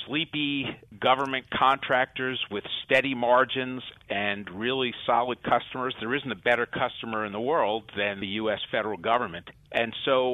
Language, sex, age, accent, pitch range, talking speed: English, male, 50-69, American, 105-125 Hz, 145 wpm